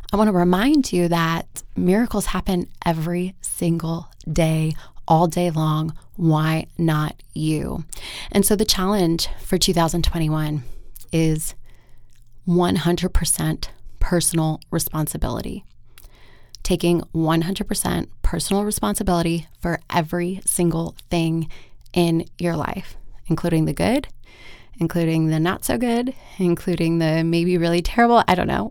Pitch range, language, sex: 160-185 Hz, English, female